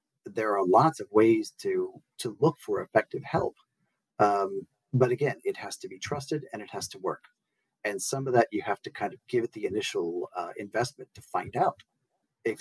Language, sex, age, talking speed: English, male, 40-59, 205 wpm